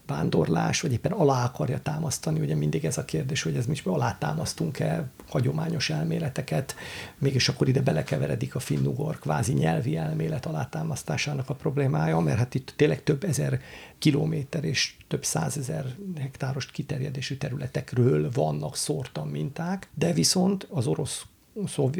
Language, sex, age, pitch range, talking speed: Hungarian, male, 50-69, 140-160 Hz, 135 wpm